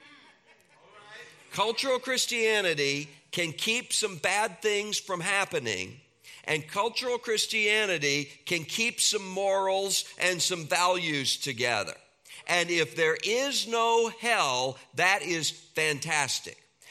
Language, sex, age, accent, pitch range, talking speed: English, male, 50-69, American, 160-225 Hz, 105 wpm